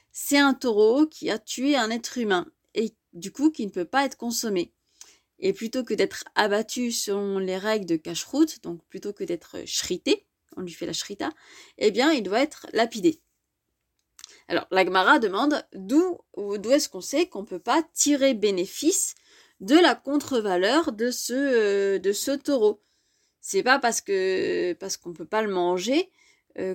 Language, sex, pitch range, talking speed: French, female, 195-315 Hz, 180 wpm